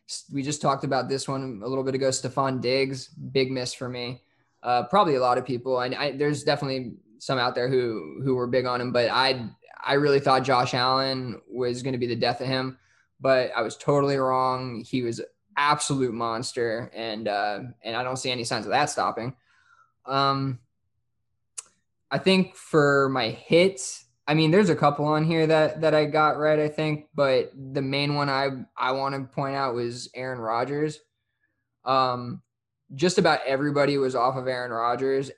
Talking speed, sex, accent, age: 190 wpm, male, American, 20-39